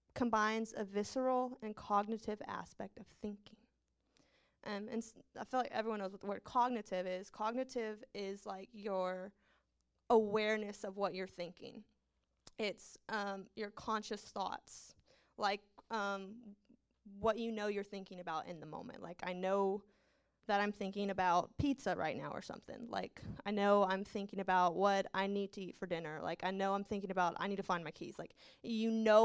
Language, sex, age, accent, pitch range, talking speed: English, female, 20-39, American, 195-225 Hz, 175 wpm